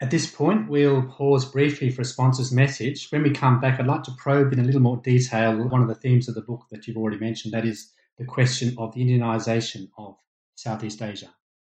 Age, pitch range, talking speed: 30-49, 100-130 Hz, 225 wpm